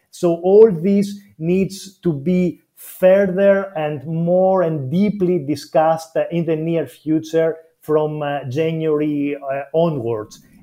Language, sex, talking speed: English, male, 105 wpm